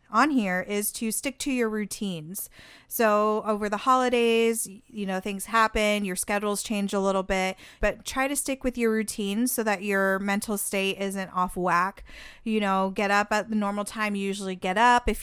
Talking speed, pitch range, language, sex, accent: 195 wpm, 185-215 Hz, English, female, American